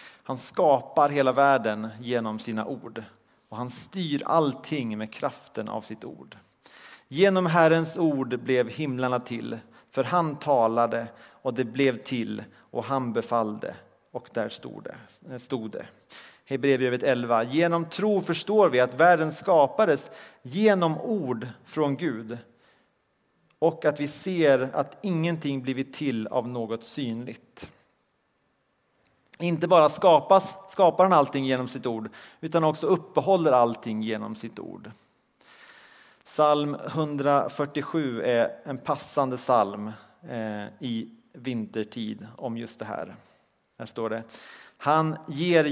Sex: male